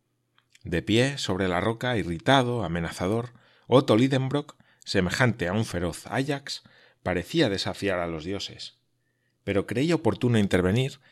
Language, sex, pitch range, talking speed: Spanish, male, 95-125 Hz, 125 wpm